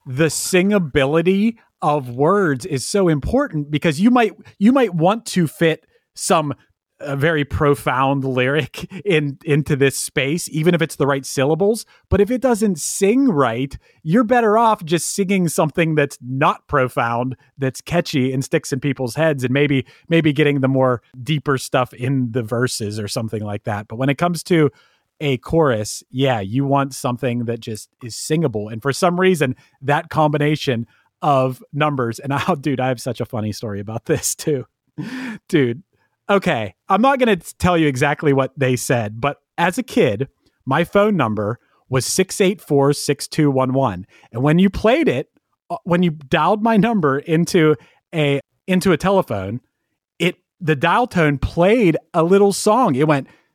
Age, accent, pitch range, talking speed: 30-49, American, 130-175 Hz, 165 wpm